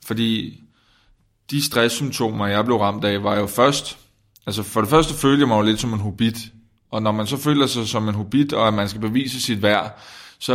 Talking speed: 220 wpm